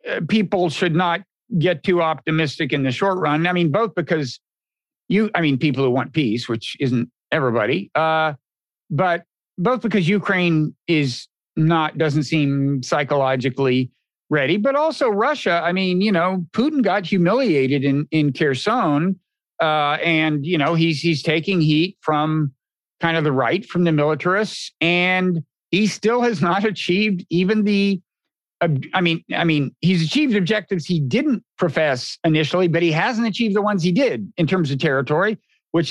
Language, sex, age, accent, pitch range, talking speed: English, male, 50-69, American, 150-190 Hz, 160 wpm